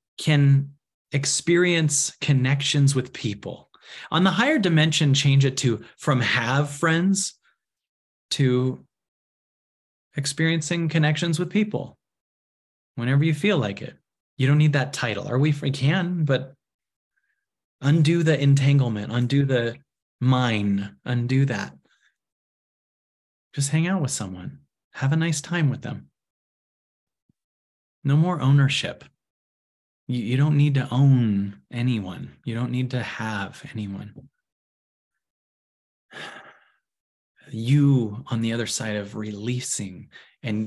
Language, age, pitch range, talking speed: English, 30-49, 110-145 Hz, 110 wpm